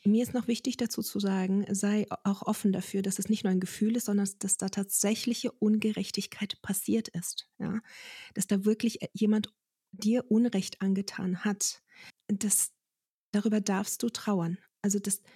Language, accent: German, German